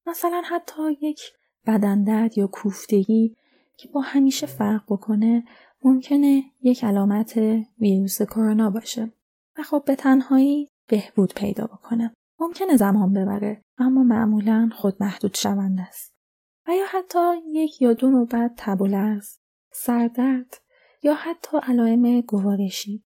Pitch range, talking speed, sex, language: 215-275 Hz, 120 wpm, female, Persian